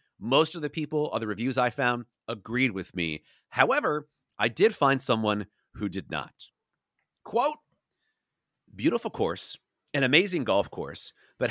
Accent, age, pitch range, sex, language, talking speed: American, 40-59, 105-160 Hz, male, English, 145 wpm